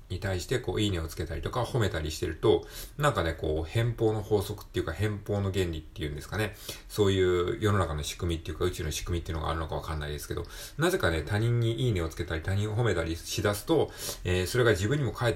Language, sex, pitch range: Japanese, male, 85-115 Hz